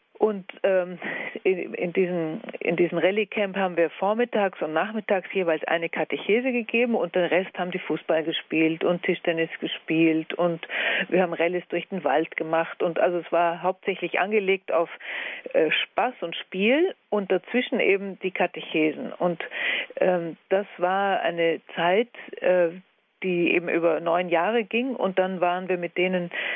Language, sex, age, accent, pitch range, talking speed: German, female, 50-69, German, 175-215 Hz, 155 wpm